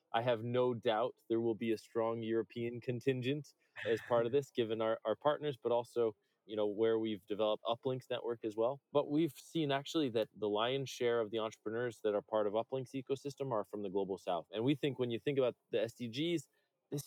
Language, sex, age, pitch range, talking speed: English, male, 20-39, 110-135 Hz, 220 wpm